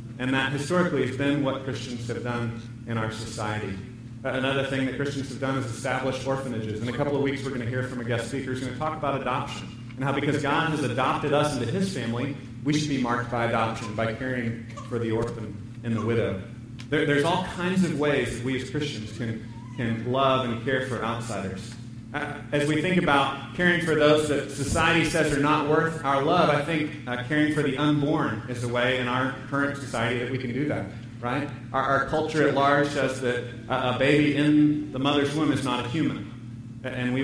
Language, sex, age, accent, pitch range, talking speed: English, male, 30-49, American, 120-145 Hz, 220 wpm